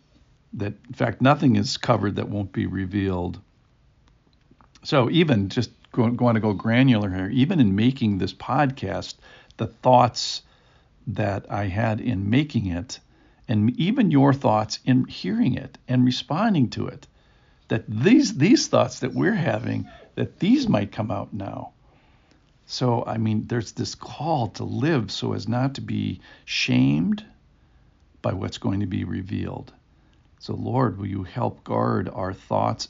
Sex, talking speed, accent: male, 150 wpm, American